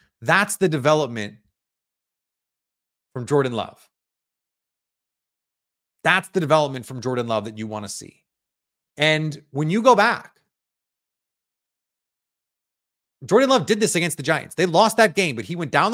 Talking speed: 140 wpm